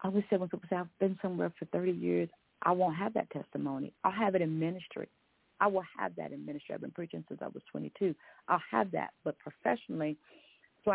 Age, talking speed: 40-59, 225 wpm